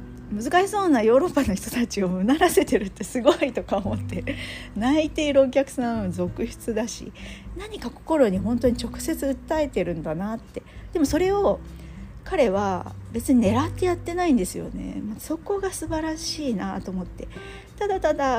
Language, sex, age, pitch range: Japanese, female, 40-59, 175-255 Hz